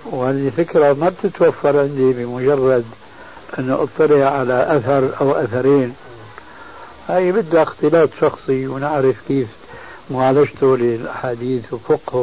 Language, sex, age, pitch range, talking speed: Arabic, male, 60-79, 130-160 Hz, 110 wpm